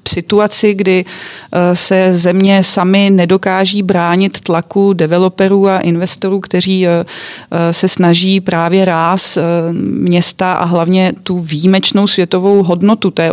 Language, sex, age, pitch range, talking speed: Czech, female, 40-59, 175-195 Hz, 115 wpm